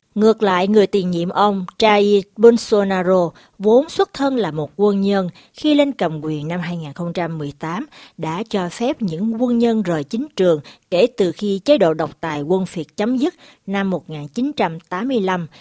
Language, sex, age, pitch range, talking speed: Vietnamese, female, 60-79, 165-225 Hz, 165 wpm